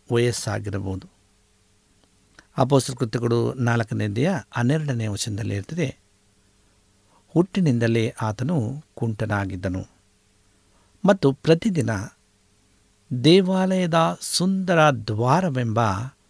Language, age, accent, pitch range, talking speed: Kannada, 60-79, native, 105-145 Hz, 50 wpm